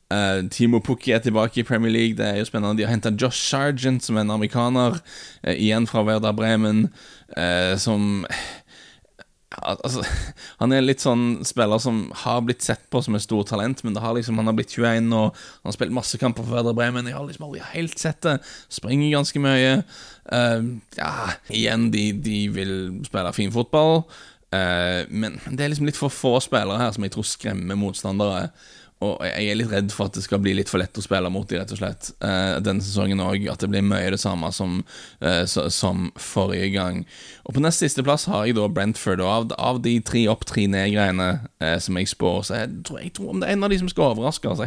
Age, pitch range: 10-29, 100-130 Hz